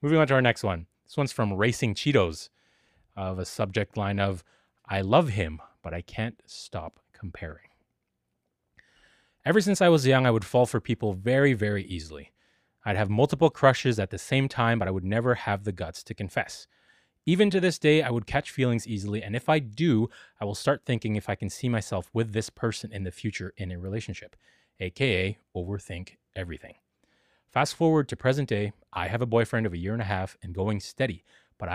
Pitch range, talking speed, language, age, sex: 100-125 Hz, 200 wpm, English, 30-49, male